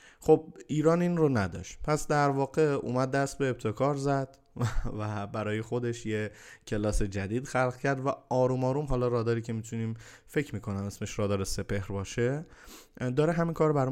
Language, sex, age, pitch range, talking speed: Persian, male, 20-39, 105-140 Hz, 165 wpm